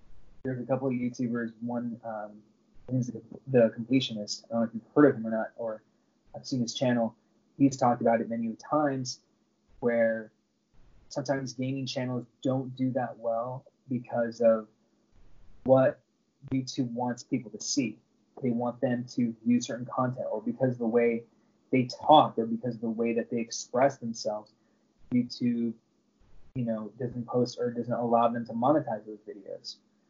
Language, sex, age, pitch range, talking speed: English, male, 20-39, 115-135 Hz, 165 wpm